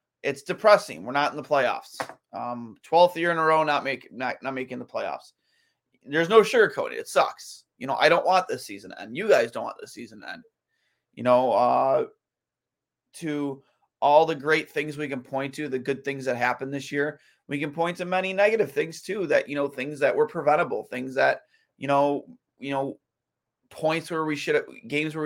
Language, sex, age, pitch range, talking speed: English, male, 30-49, 135-155 Hz, 205 wpm